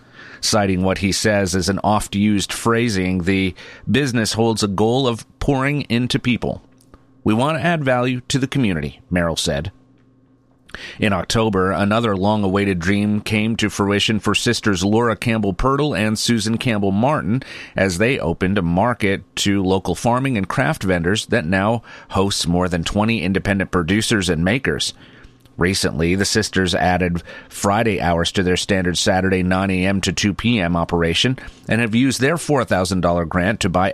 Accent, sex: American, male